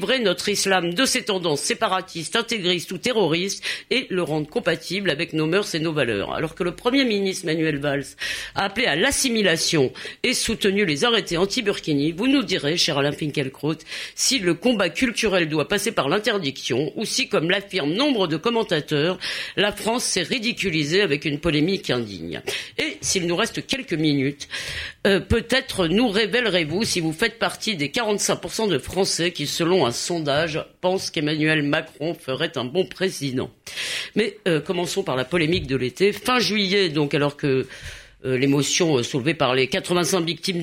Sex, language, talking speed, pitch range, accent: female, French, 170 wpm, 160-205 Hz, French